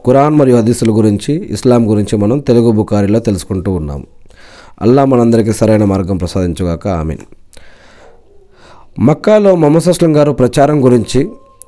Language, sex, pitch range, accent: Telugu, male, 110-155 Hz, native